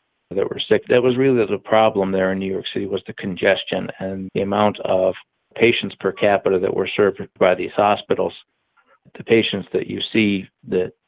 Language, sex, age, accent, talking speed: English, male, 40-59, American, 190 wpm